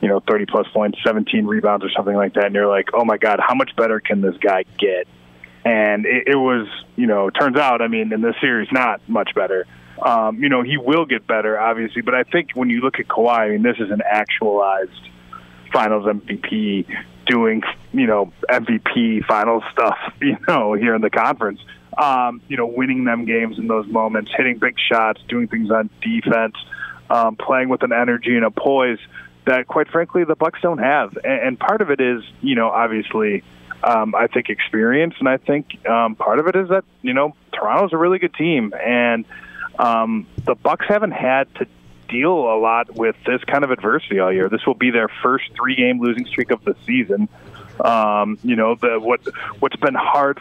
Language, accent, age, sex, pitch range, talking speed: English, American, 20-39, male, 110-130 Hz, 205 wpm